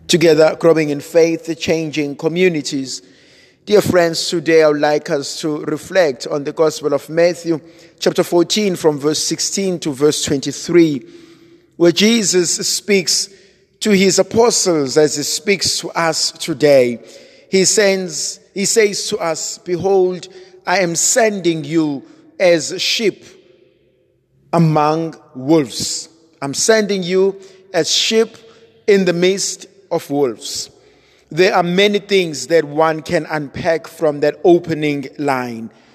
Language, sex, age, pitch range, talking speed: English, male, 50-69, 160-195 Hz, 125 wpm